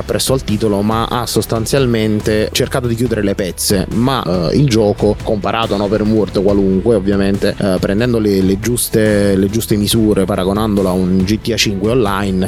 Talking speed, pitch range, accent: 165 wpm, 100-120 Hz, native